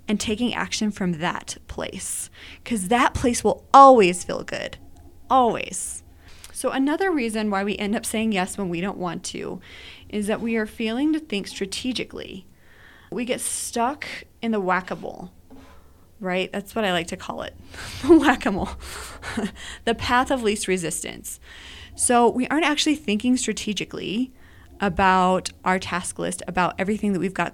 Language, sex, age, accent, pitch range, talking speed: English, female, 20-39, American, 185-235 Hz, 155 wpm